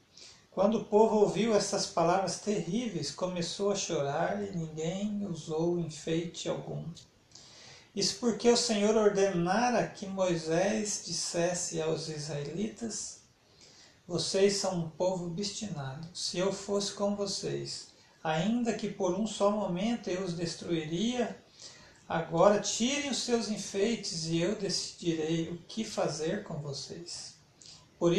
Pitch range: 160-205 Hz